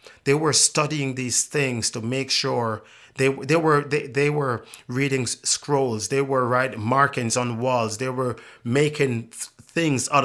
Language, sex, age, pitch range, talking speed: English, male, 30-49, 115-140 Hz, 160 wpm